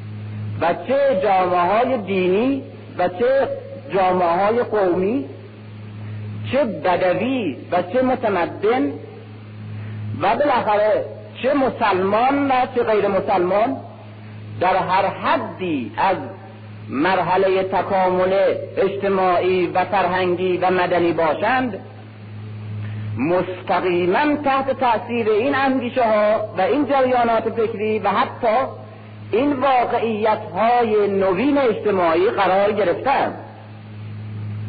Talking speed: 95 wpm